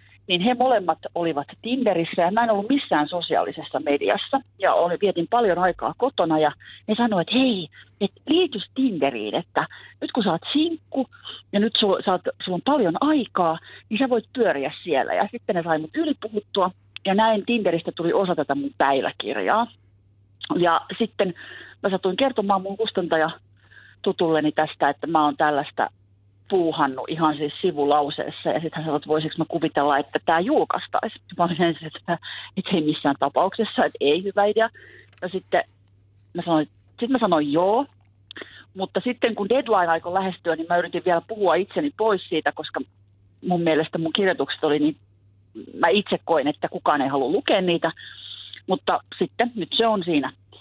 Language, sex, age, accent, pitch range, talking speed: Finnish, female, 40-59, native, 150-210 Hz, 170 wpm